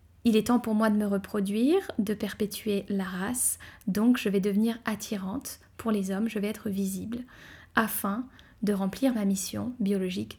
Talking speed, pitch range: 175 wpm, 195-225 Hz